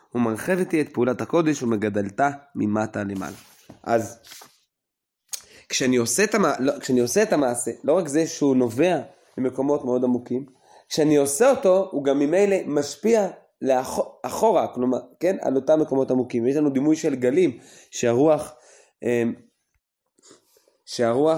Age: 20-39